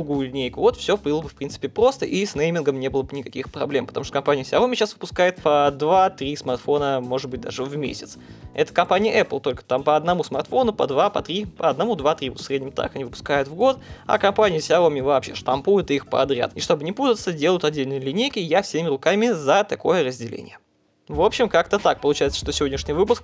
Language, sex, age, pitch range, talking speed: Russian, male, 20-39, 140-190 Hz, 210 wpm